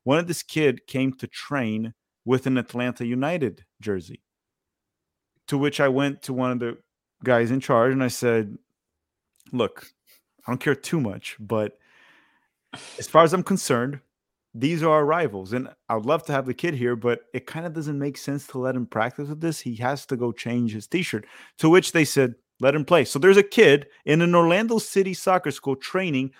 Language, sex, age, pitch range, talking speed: English, male, 30-49, 120-165 Hz, 200 wpm